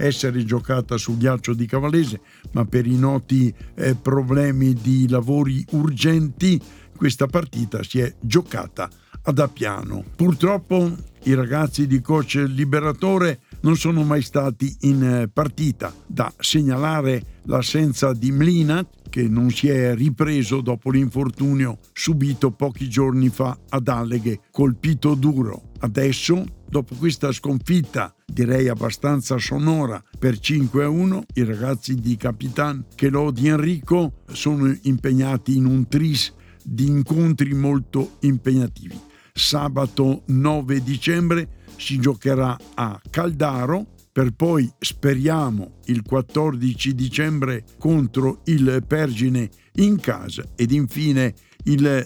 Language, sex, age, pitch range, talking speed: Italian, male, 60-79, 125-150 Hz, 115 wpm